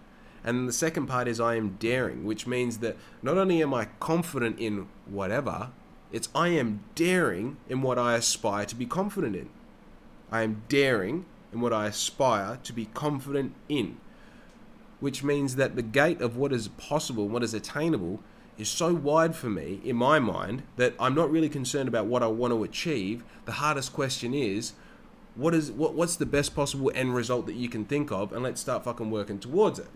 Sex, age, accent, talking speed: male, 20-39, Australian, 190 wpm